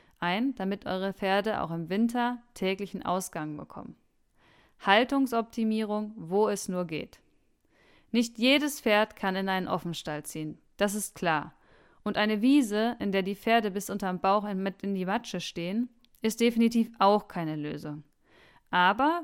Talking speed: 145 wpm